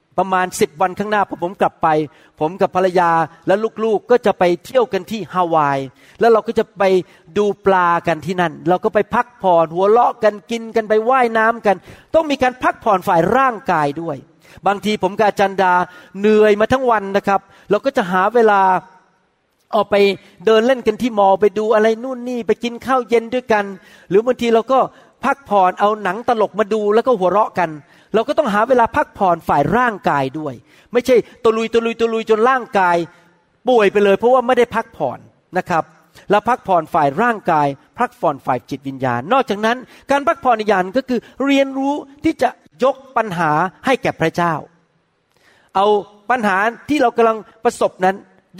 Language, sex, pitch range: Thai, male, 180-235 Hz